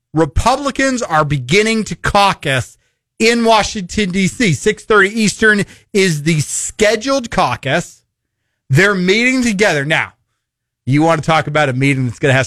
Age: 40-59